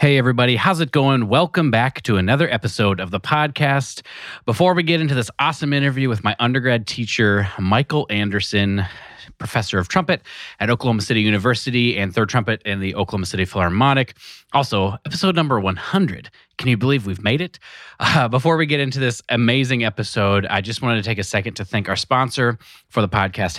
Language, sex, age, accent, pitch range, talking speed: English, male, 30-49, American, 105-140 Hz, 185 wpm